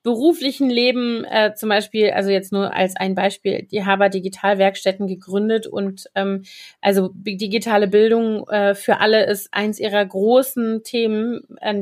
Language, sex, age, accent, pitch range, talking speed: German, female, 30-49, German, 205-245 Hz, 145 wpm